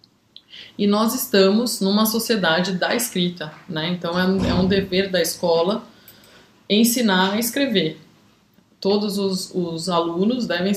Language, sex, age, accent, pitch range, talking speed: Portuguese, female, 20-39, Brazilian, 170-205 Hz, 125 wpm